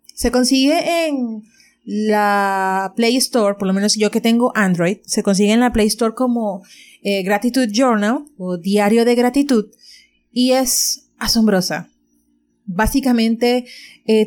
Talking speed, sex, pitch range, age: 135 wpm, female, 205-260 Hz, 30-49